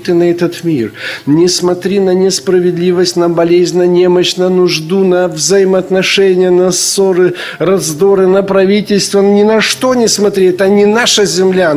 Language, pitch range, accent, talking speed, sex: Ukrainian, 195-245 Hz, native, 155 wpm, male